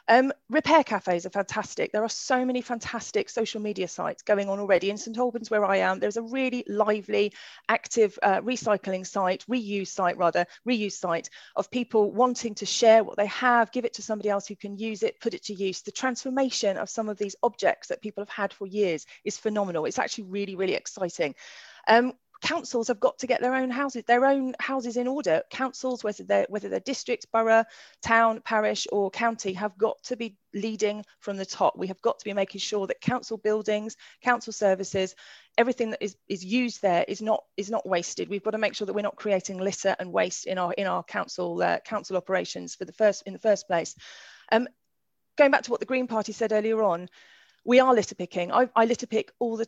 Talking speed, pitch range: 215 wpm, 200-245 Hz